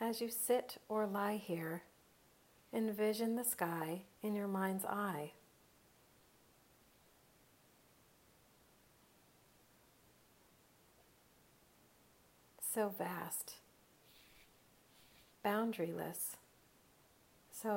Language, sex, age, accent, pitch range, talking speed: English, female, 40-59, American, 185-215 Hz, 55 wpm